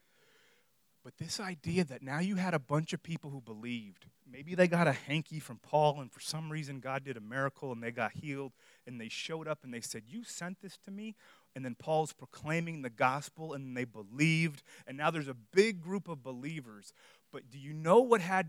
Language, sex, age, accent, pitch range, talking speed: English, male, 30-49, American, 135-195 Hz, 215 wpm